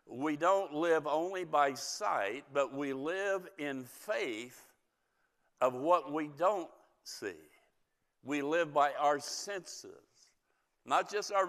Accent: American